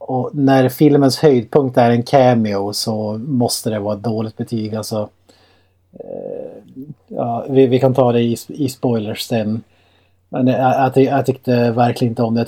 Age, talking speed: 30-49, 165 wpm